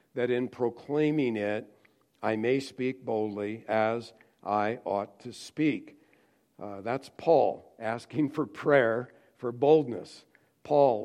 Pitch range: 110-130 Hz